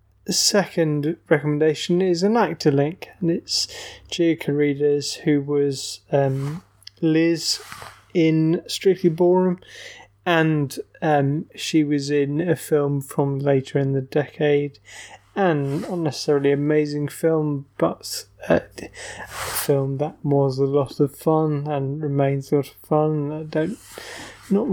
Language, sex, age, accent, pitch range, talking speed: English, male, 20-39, British, 135-155 Hz, 130 wpm